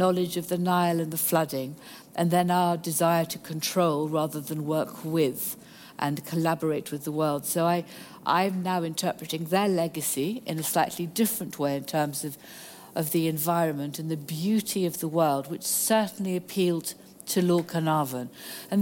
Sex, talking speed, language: female, 170 wpm, English